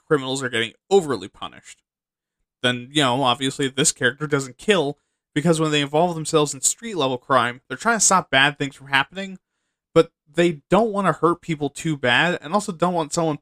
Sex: male